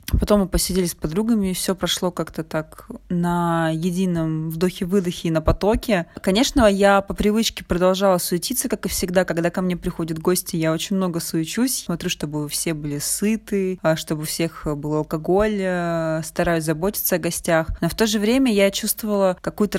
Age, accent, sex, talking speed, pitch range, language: 20-39, native, female, 165 wpm, 165-195 Hz, Russian